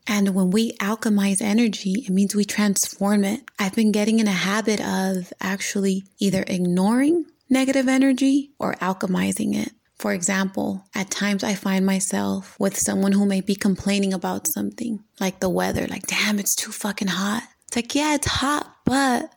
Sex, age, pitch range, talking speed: female, 20-39, 190-225 Hz, 170 wpm